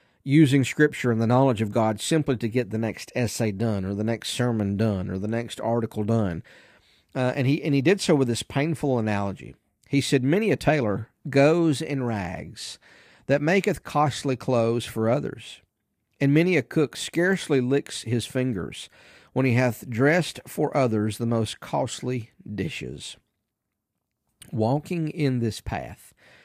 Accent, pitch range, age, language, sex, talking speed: American, 115-150 Hz, 50-69, English, male, 160 wpm